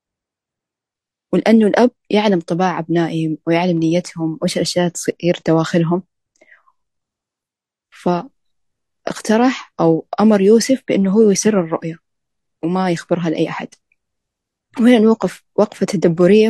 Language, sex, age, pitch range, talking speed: Arabic, female, 20-39, 165-205 Hz, 95 wpm